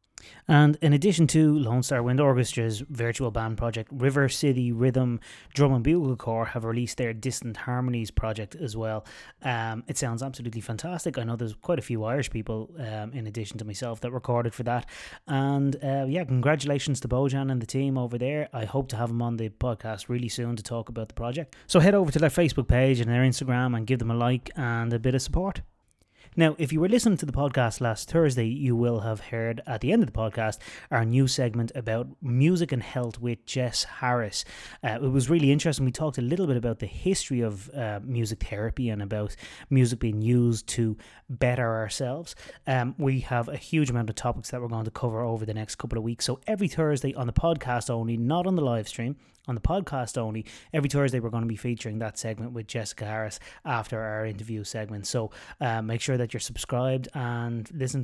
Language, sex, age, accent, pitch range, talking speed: English, male, 20-39, Irish, 115-135 Hz, 215 wpm